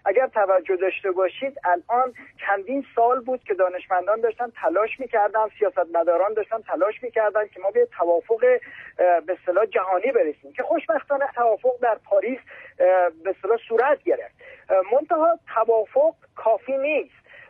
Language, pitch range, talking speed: Persian, 195-295 Hz, 135 wpm